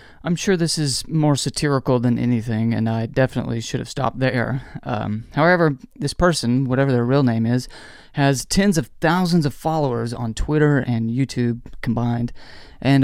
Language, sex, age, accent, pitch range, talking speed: English, male, 30-49, American, 120-150 Hz, 165 wpm